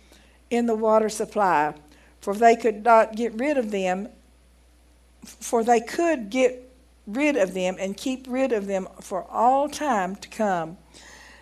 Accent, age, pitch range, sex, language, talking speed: American, 60-79, 175-240 Hz, female, English, 150 wpm